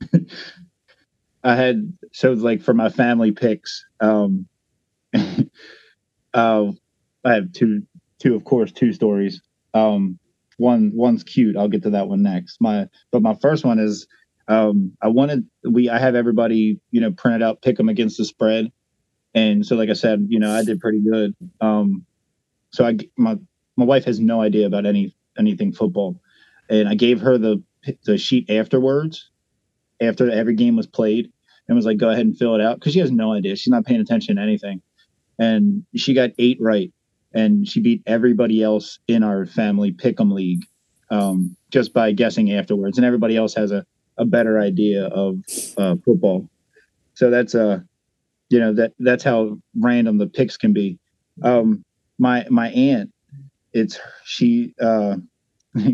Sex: male